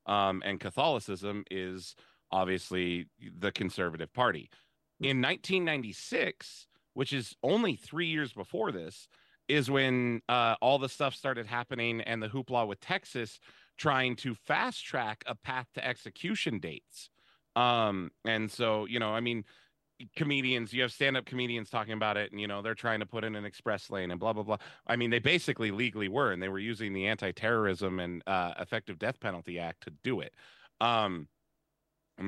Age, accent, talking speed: 30-49, American, 170 wpm